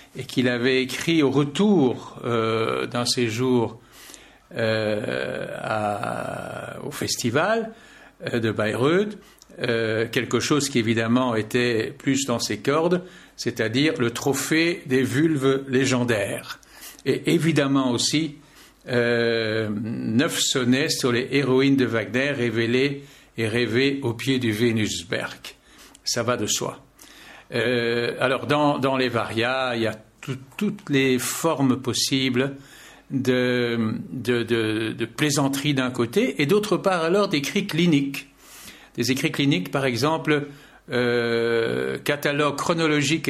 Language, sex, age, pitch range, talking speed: French, male, 60-79, 120-145 Hz, 120 wpm